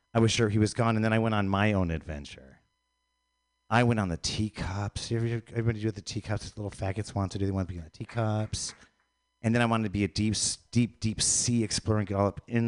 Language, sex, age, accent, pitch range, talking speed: English, male, 40-59, American, 90-120 Hz, 250 wpm